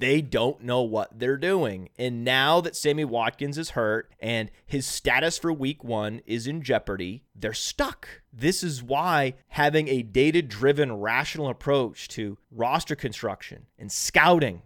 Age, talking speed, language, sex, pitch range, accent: 30-49, 150 wpm, English, male, 130-160 Hz, American